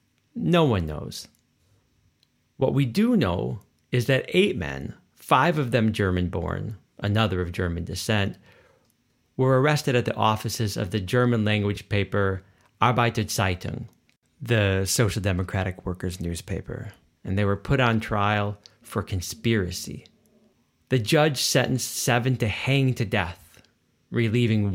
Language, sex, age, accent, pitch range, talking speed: English, male, 40-59, American, 100-130 Hz, 125 wpm